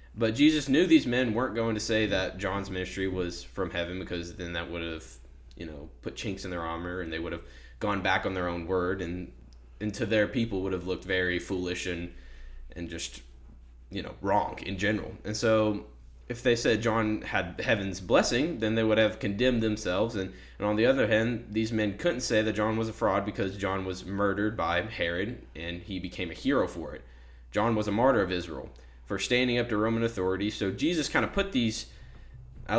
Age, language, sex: 10-29, English, male